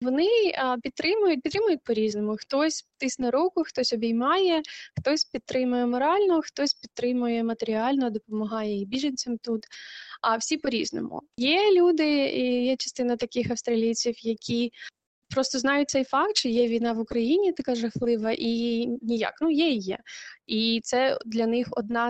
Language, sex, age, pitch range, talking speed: Ukrainian, female, 20-39, 230-270 Hz, 140 wpm